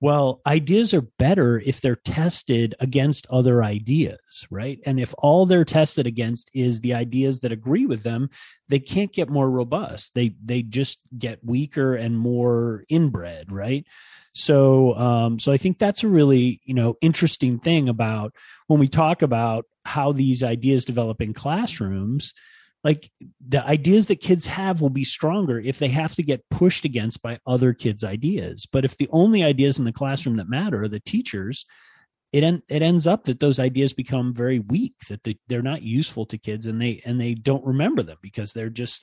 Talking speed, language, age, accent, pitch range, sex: 185 wpm, English, 30-49, American, 115-150 Hz, male